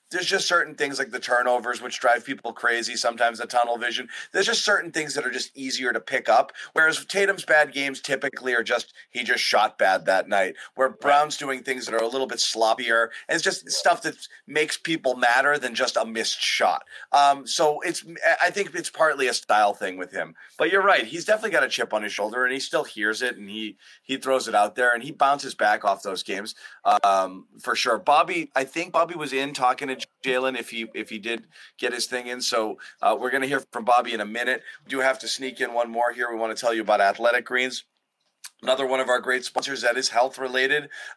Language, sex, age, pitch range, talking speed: English, male, 30-49, 115-135 Hz, 235 wpm